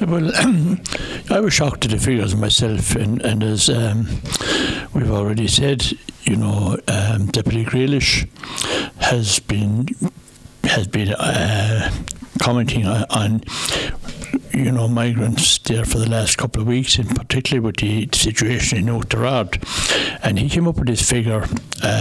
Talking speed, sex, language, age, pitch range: 140 wpm, male, English, 60-79, 100-125 Hz